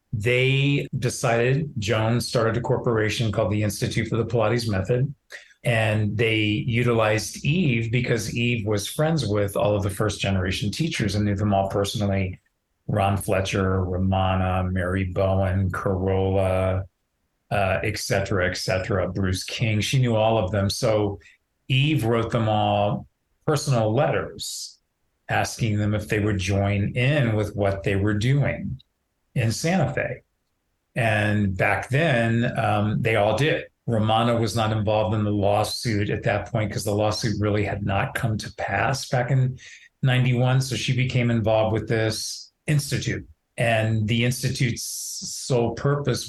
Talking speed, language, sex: 145 wpm, English, male